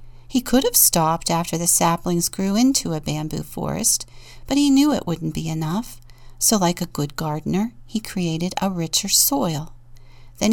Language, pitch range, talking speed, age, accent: English, 155-225 Hz, 170 wpm, 50-69, American